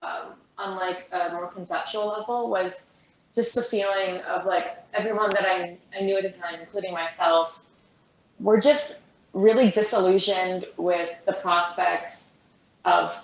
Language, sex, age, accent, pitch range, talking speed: English, female, 20-39, American, 175-210 Hz, 140 wpm